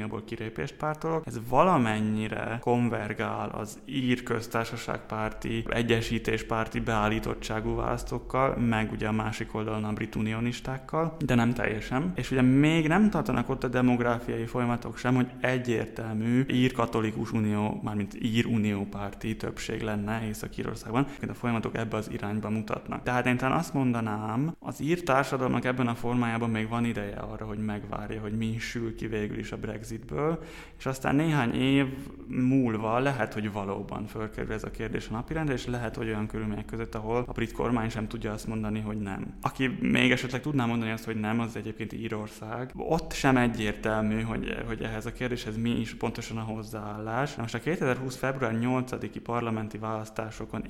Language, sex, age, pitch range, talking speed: Hungarian, male, 20-39, 110-125 Hz, 165 wpm